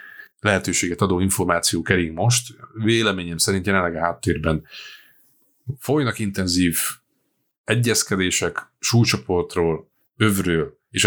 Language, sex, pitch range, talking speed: Hungarian, male, 85-100 Hz, 85 wpm